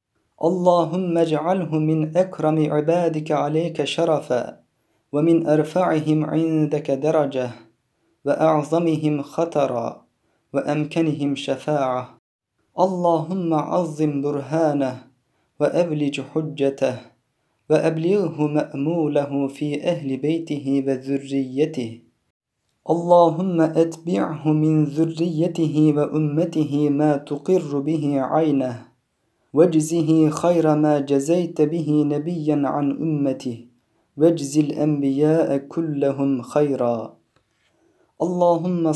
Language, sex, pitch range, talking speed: Turkish, male, 140-160 Hz, 75 wpm